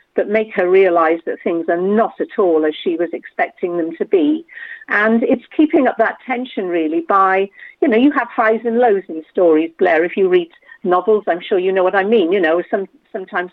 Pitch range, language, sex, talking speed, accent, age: 180-245 Hz, English, female, 220 wpm, British, 50-69